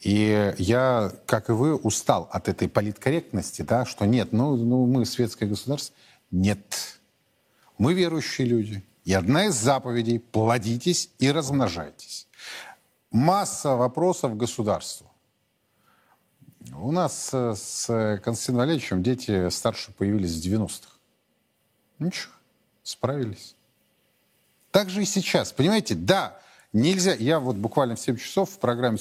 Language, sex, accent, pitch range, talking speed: Russian, male, native, 105-135 Hz, 120 wpm